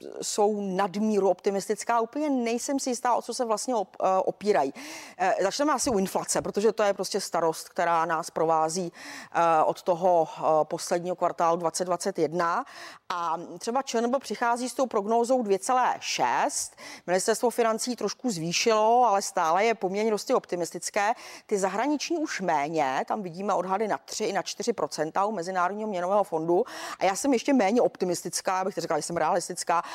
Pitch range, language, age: 180-250 Hz, Czech, 40-59